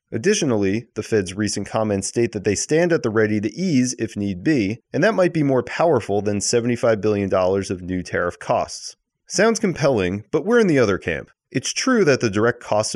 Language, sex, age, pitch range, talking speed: English, male, 30-49, 100-140 Hz, 205 wpm